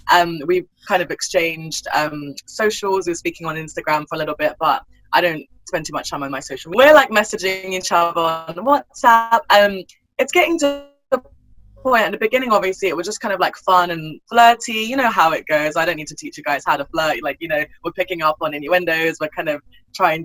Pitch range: 150-195 Hz